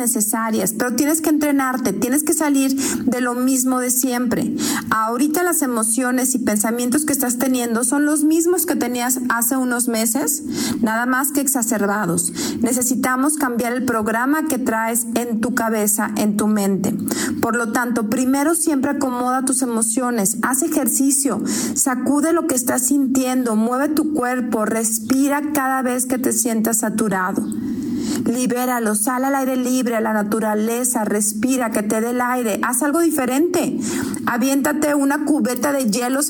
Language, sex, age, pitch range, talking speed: Spanish, female, 40-59, 235-285 Hz, 150 wpm